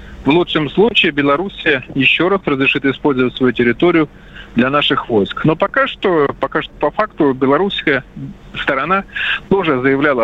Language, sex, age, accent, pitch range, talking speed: Russian, male, 40-59, native, 135-185 Hz, 140 wpm